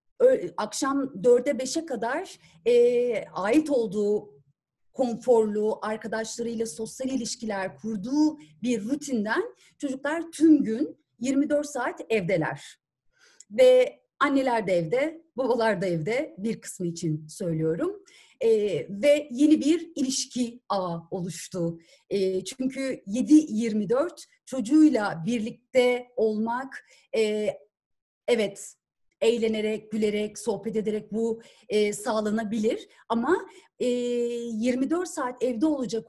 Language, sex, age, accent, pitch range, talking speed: Turkish, female, 40-59, native, 200-280 Hz, 95 wpm